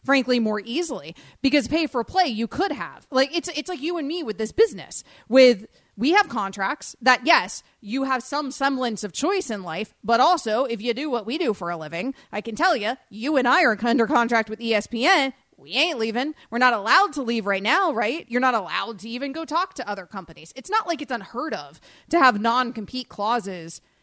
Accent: American